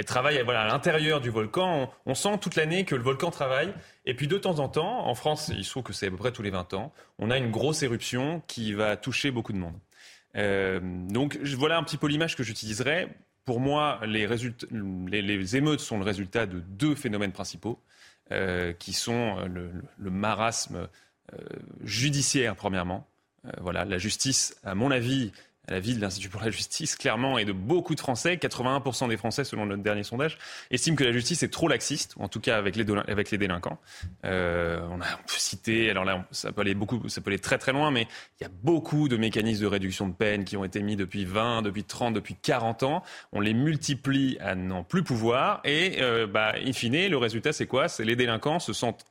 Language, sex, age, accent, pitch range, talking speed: French, male, 30-49, French, 100-135 Hz, 225 wpm